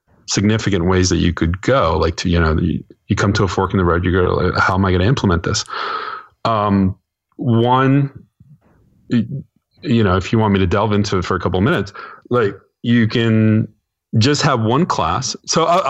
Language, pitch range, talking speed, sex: English, 85-110 Hz, 200 wpm, male